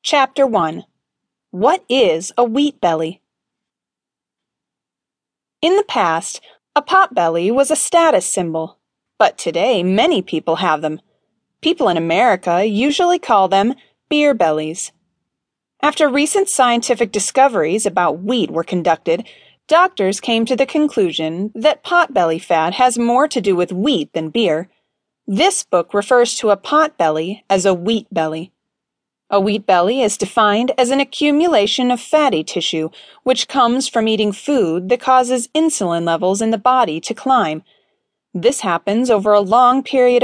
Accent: American